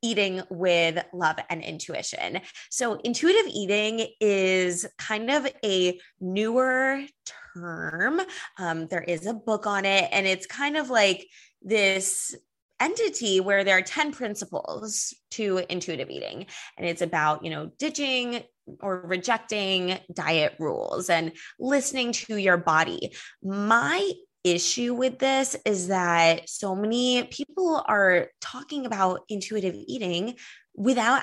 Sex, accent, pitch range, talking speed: female, American, 180-235 Hz, 125 wpm